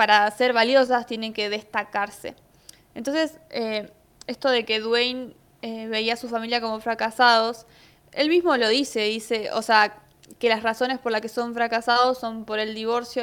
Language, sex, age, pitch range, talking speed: Spanish, female, 20-39, 220-255 Hz, 170 wpm